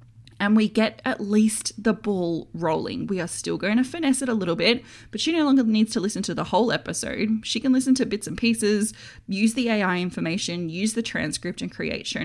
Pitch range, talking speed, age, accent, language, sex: 170-225 Hz, 225 wpm, 20-39, Australian, English, female